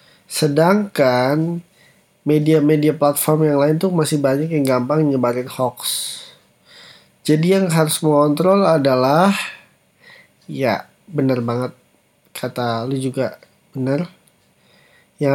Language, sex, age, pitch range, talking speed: Indonesian, male, 20-39, 135-165 Hz, 100 wpm